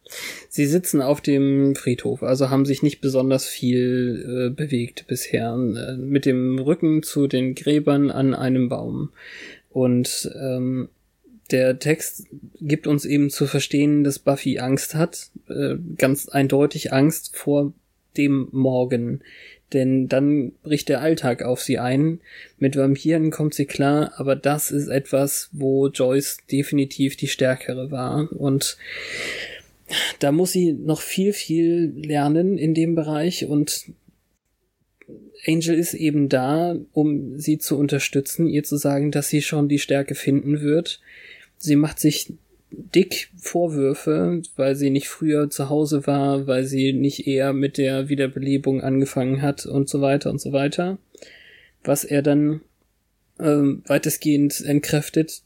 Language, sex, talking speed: German, male, 140 wpm